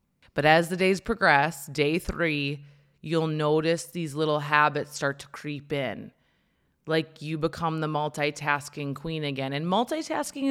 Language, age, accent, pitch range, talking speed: English, 20-39, American, 145-200 Hz, 145 wpm